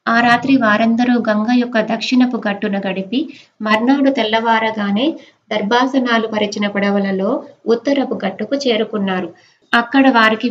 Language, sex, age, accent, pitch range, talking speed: Telugu, female, 20-39, native, 205-240 Hz, 105 wpm